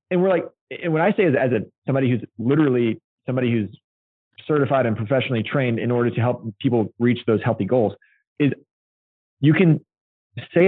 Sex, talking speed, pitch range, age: male, 175 wpm, 115-140 Hz, 20-39